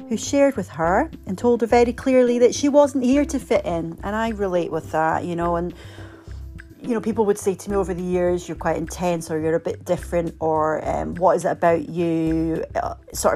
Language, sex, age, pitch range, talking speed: English, female, 30-49, 160-195 Hz, 230 wpm